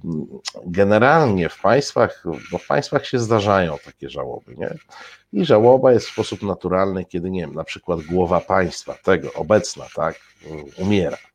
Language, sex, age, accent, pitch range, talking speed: Polish, male, 50-69, native, 90-110 Hz, 150 wpm